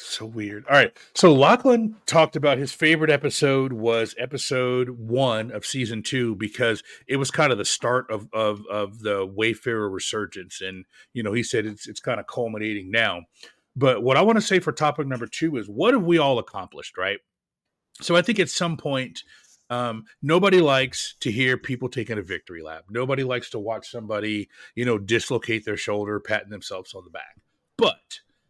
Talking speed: 190 wpm